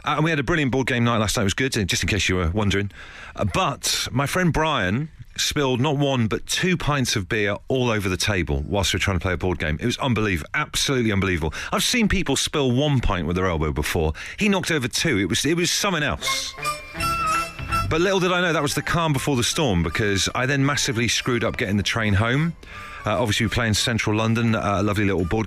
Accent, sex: British, male